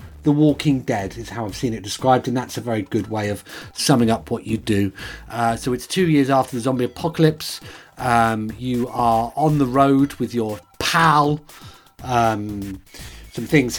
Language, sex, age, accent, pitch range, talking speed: English, male, 40-59, British, 110-150 Hz, 185 wpm